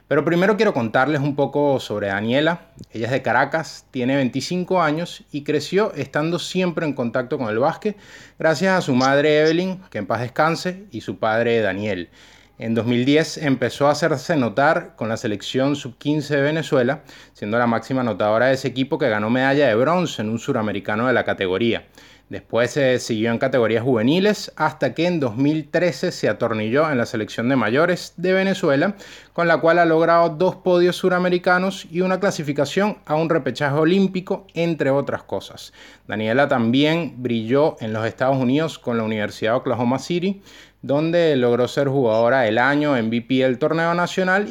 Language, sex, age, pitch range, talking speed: Spanish, male, 20-39, 120-170 Hz, 175 wpm